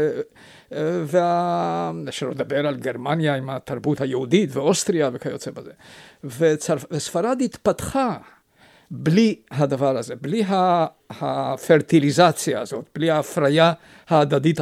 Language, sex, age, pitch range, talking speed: Hebrew, male, 50-69, 140-170 Hz, 100 wpm